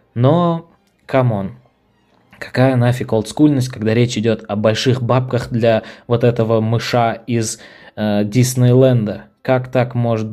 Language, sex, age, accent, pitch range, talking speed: Russian, male, 20-39, native, 105-130 Hz, 120 wpm